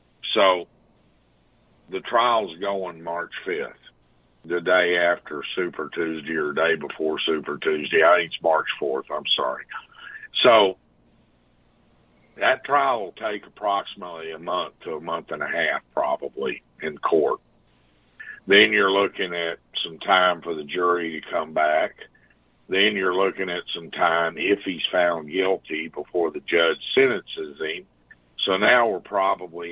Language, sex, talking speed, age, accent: English, male, 145 wpm, 50-69, American